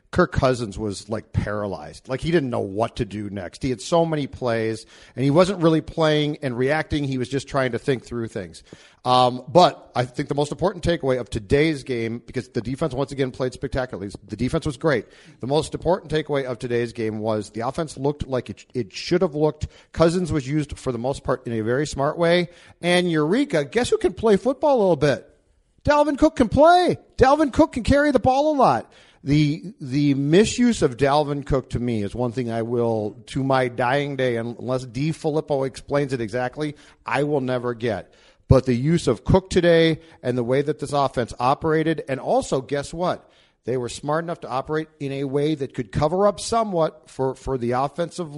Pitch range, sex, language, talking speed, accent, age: 125-165 Hz, male, English, 210 wpm, American, 40-59